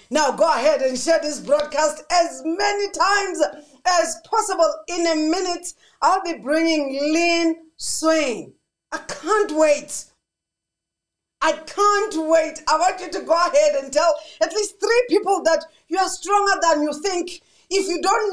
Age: 40-59